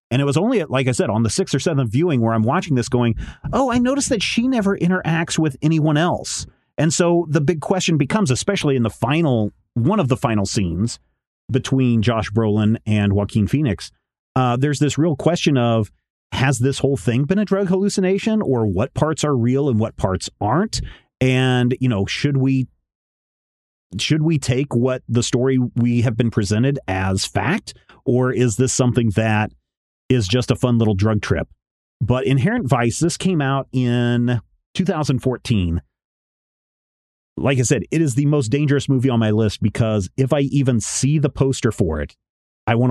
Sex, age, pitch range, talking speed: male, 40-59, 105-140 Hz, 185 wpm